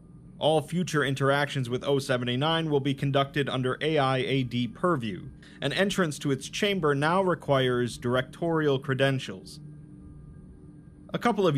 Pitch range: 130-165 Hz